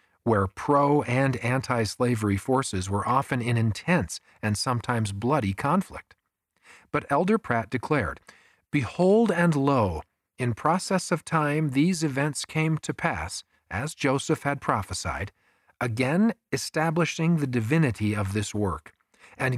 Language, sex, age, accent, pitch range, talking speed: English, male, 40-59, American, 100-155 Hz, 130 wpm